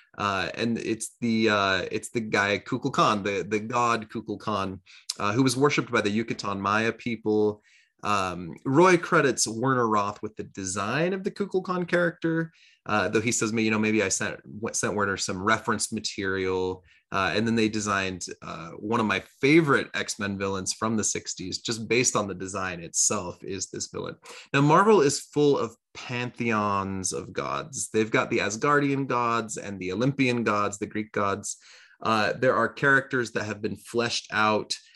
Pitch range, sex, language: 100-125 Hz, male, English